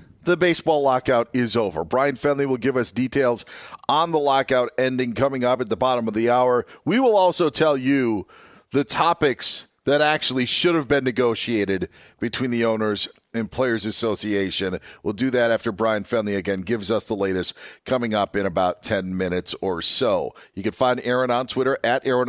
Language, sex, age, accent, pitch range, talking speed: English, male, 40-59, American, 120-150 Hz, 185 wpm